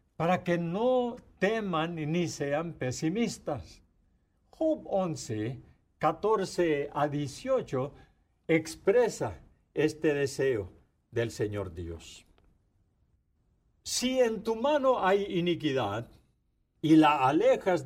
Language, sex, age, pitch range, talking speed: English, male, 50-69, 130-195 Hz, 90 wpm